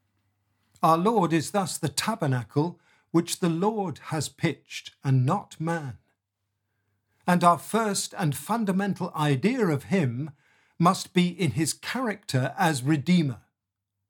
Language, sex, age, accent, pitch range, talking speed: English, male, 50-69, British, 120-185 Hz, 125 wpm